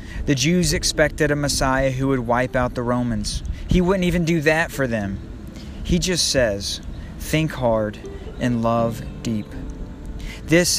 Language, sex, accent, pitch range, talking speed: English, male, American, 110-135 Hz, 150 wpm